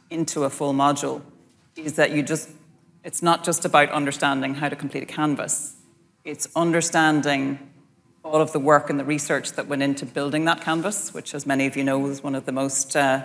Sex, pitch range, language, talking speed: female, 145-170 Hz, English, 205 wpm